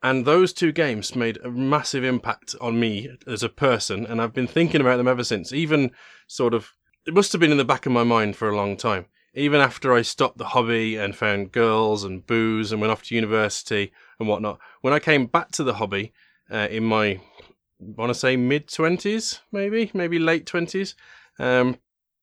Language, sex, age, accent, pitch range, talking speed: English, male, 20-39, British, 110-140 Hz, 205 wpm